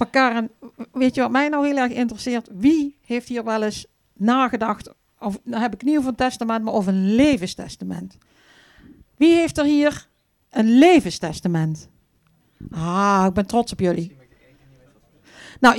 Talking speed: 150 wpm